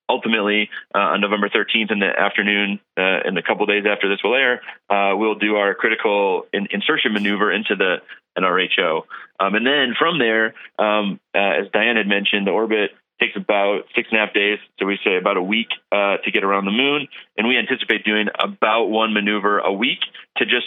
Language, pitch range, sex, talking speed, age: English, 100-110 Hz, male, 205 wpm, 30-49